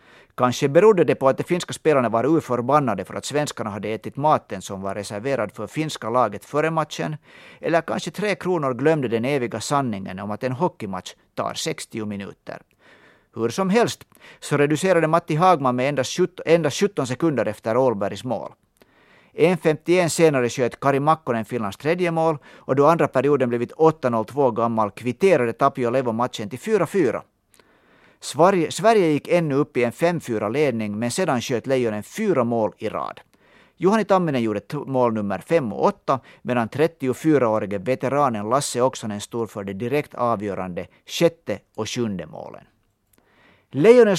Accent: Finnish